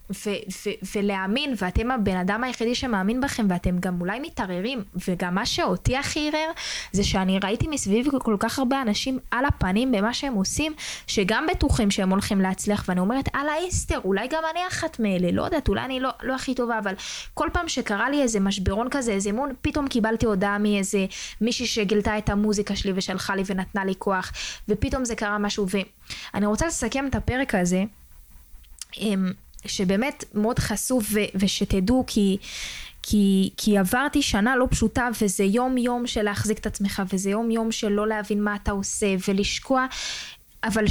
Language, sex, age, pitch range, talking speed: Hebrew, female, 20-39, 195-245 Hz, 165 wpm